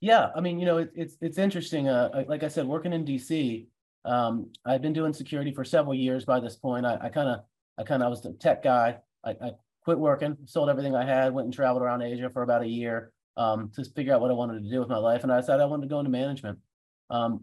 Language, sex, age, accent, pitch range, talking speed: English, male, 30-49, American, 120-155 Hz, 270 wpm